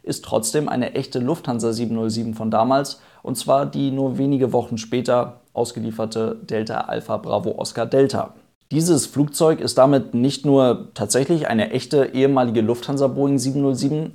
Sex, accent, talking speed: male, German, 145 wpm